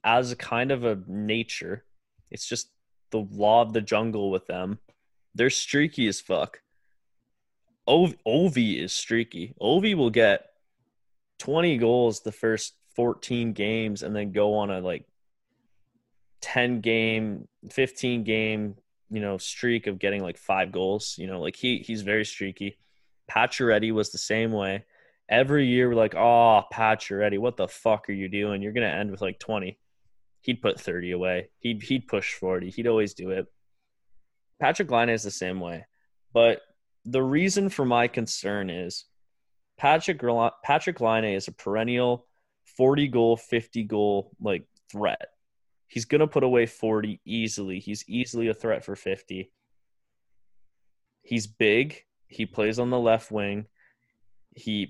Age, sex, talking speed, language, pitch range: 20-39, male, 150 wpm, English, 100-120 Hz